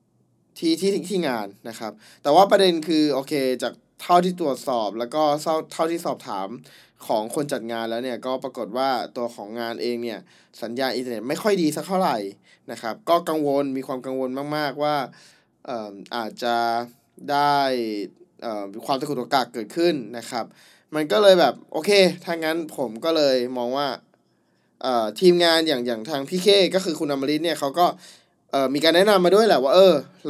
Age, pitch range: 20-39, 125-165 Hz